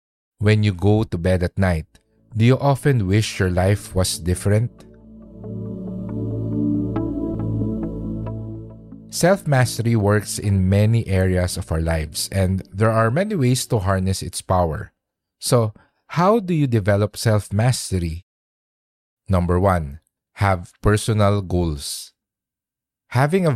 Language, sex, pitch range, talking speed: English, male, 95-120 Hz, 115 wpm